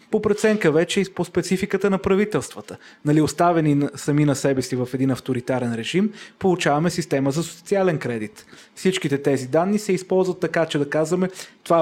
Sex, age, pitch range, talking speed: male, 30-49, 140-180 Hz, 170 wpm